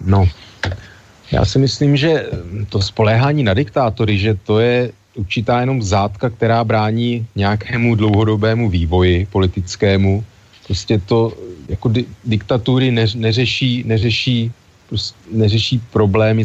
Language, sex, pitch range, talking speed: Slovak, male, 100-115 Hz, 105 wpm